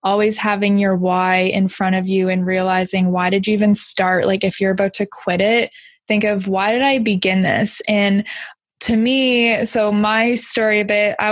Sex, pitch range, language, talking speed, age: female, 195-230 Hz, English, 200 wpm, 20-39